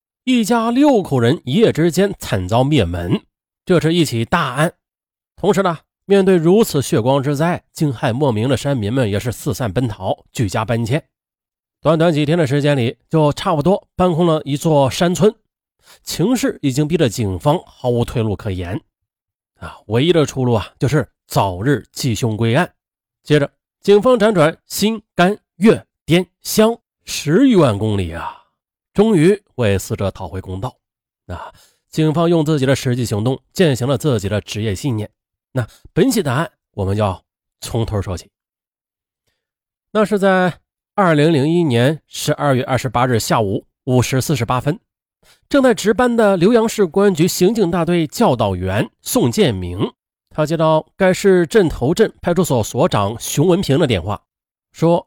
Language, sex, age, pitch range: Chinese, male, 30-49, 115-180 Hz